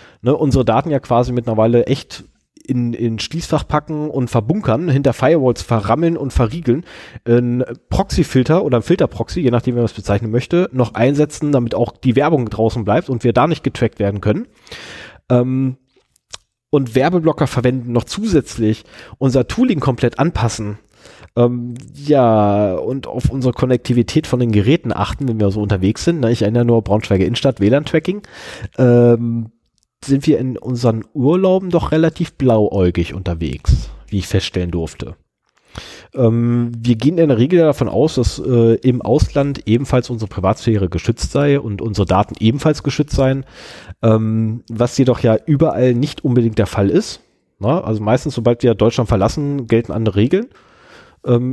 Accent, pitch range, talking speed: German, 110-140 Hz, 155 wpm